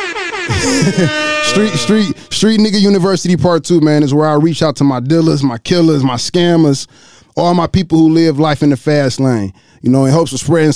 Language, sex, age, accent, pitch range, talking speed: English, male, 20-39, American, 120-160 Hz, 200 wpm